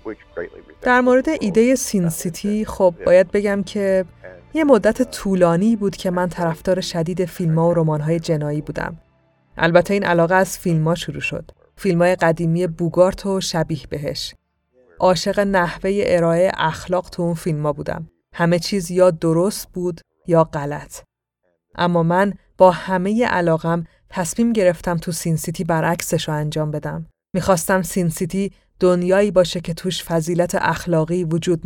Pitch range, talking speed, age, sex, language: 165-190 Hz, 140 wpm, 30-49, female, Persian